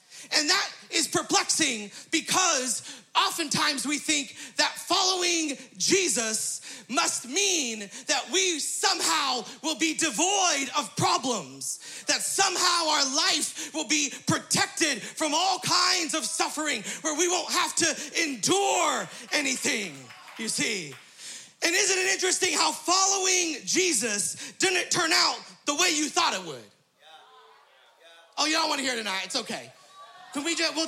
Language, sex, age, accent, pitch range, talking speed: English, male, 30-49, American, 270-355 Hz, 135 wpm